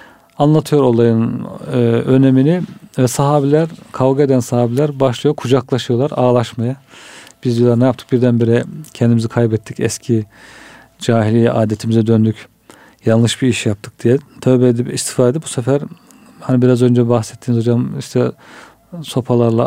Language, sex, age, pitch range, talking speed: Turkish, male, 40-59, 115-135 Hz, 125 wpm